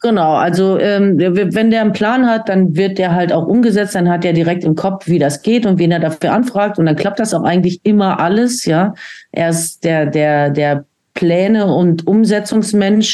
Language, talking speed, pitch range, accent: German, 205 wpm, 165-210 Hz, German